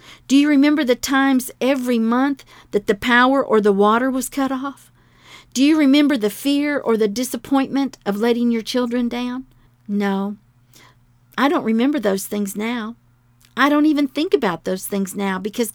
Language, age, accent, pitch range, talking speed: English, 50-69, American, 205-290 Hz, 170 wpm